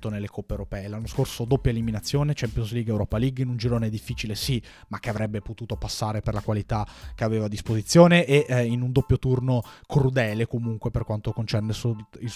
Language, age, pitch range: Italian, 20-39, 110-130 Hz